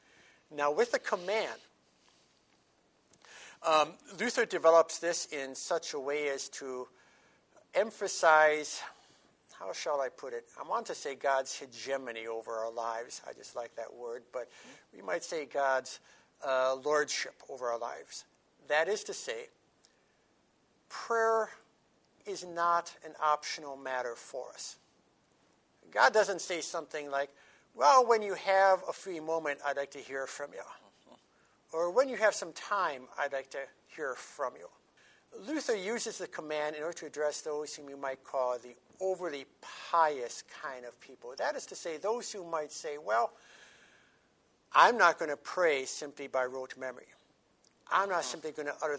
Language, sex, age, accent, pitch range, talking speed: English, male, 60-79, American, 140-195 Hz, 160 wpm